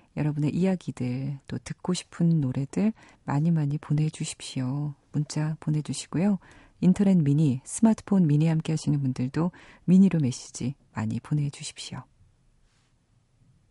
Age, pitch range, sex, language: 40-59, 140-185 Hz, female, Korean